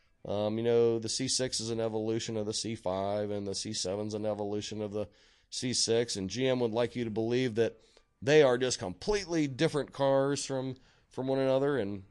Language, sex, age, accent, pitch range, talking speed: English, male, 30-49, American, 110-130 Hz, 195 wpm